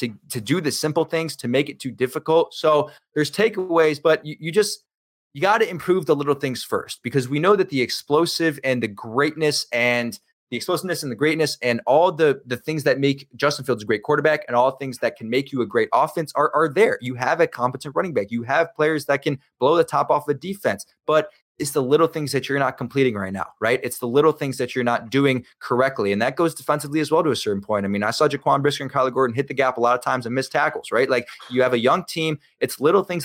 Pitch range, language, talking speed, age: 130-160 Hz, English, 260 wpm, 20-39